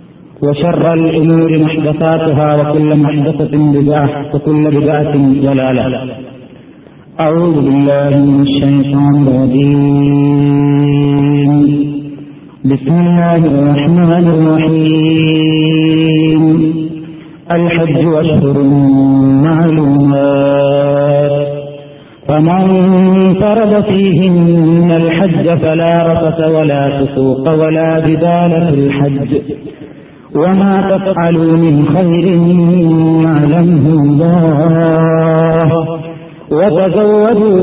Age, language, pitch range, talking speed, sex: 50-69, Malayalam, 145-170 Hz, 70 wpm, male